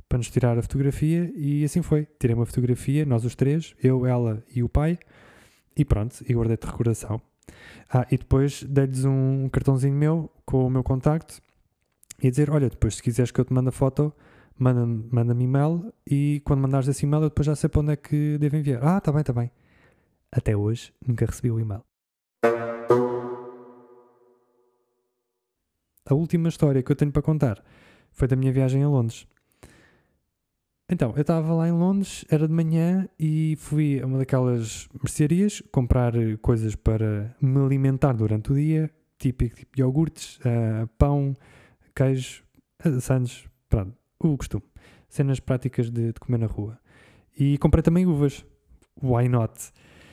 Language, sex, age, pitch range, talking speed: Portuguese, male, 20-39, 120-150 Hz, 165 wpm